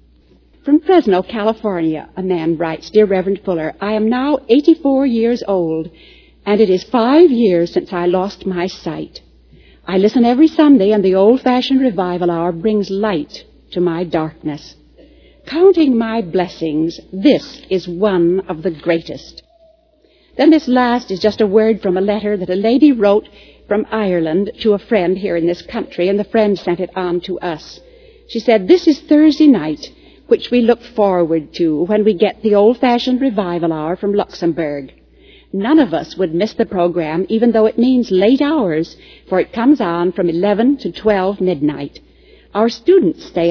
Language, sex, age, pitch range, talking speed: English, female, 60-79, 175-245 Hz, 170 wpm